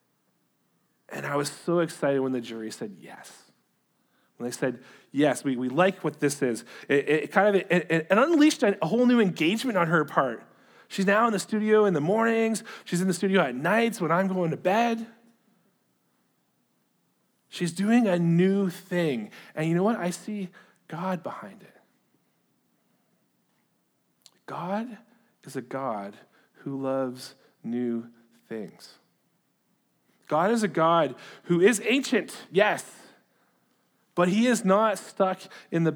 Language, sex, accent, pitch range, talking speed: English, male, American, 155-205 Hz, 145 wpm